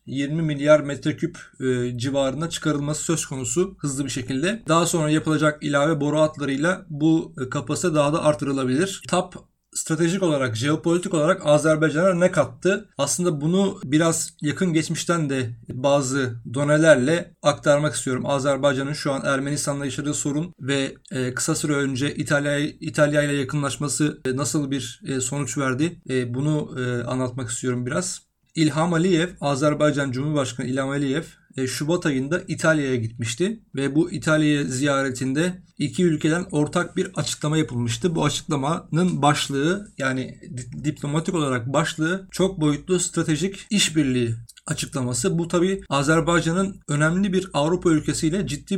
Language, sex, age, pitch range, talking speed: Turkish, male, 40-59, 140-170 Hz, 130 wpm